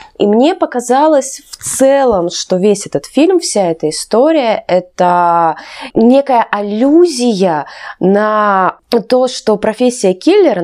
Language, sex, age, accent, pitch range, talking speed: Russian, female, 20-39, native, 170-240 Hz, 115 wpm